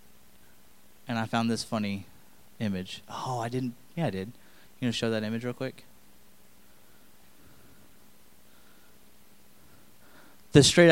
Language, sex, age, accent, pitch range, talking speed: English, male, 20-39, American, 115-165 Hz, 125 wpm